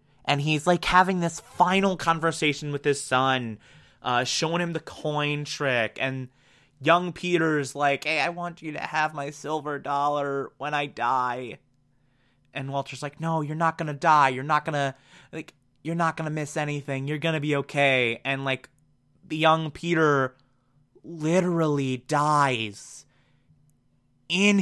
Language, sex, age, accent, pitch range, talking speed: English, male, 20-39, American, 130-160 Hz, 160 wpm